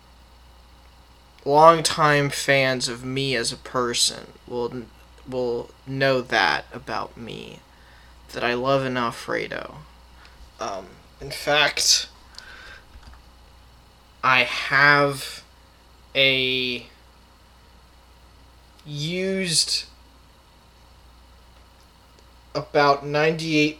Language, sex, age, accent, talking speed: English, male, 20-39, American, 70 wpm